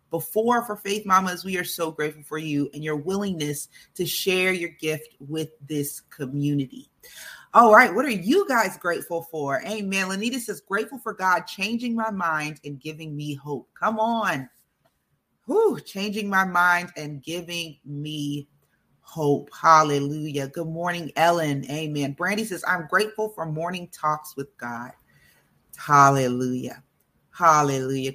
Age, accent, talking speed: 30-49, American, 145 wpm